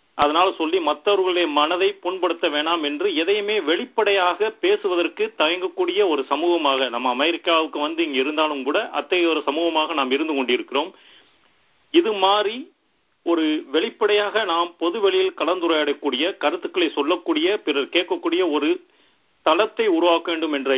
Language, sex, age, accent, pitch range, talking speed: Tamil, male, 40-59, native, 150-210 Hz, 110 wpm